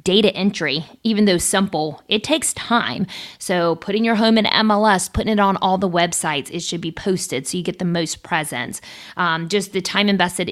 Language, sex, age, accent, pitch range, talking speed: English, female, 30-49, American, 170-220 Hz, 200 wpm